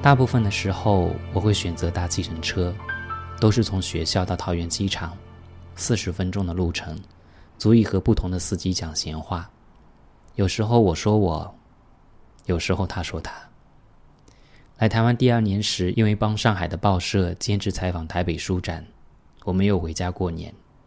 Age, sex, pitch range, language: 20-39, male, 85-105 Hz, Chinese